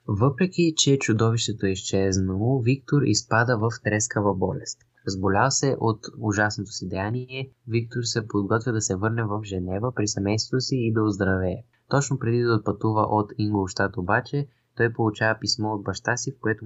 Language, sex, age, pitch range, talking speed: Bulgarian, male, 20-39, 100-120 Hz, 160 wpm